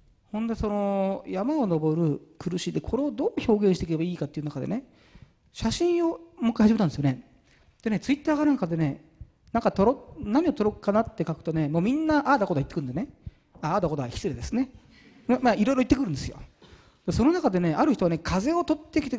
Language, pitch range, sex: Japanese, 165-250 Hz, male